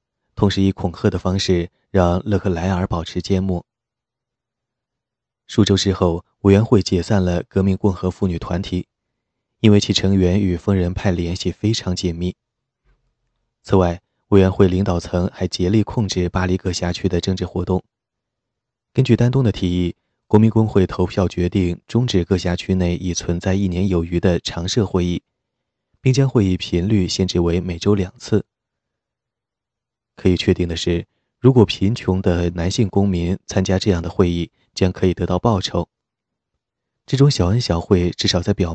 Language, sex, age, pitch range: Chinese, male, 20-39, 90-115 Hz